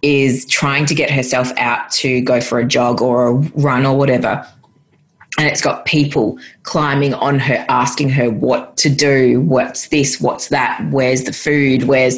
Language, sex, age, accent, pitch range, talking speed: English, female, 20-39, Australian, 130-150 Hz, 175 wpm